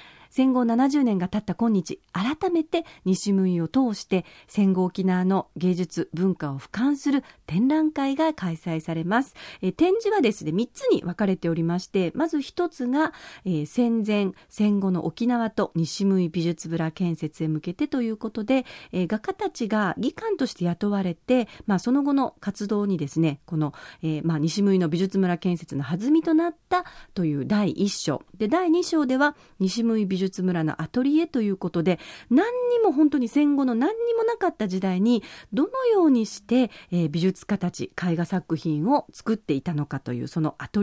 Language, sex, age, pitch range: Japanese, female, 40-59, 175-260 Hz